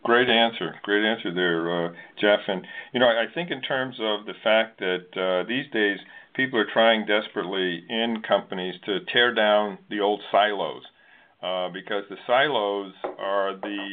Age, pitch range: 50-69, 95-110 Hz